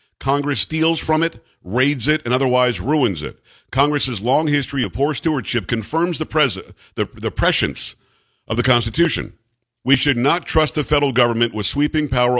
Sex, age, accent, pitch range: male, 50-69, American, 115-150 Hz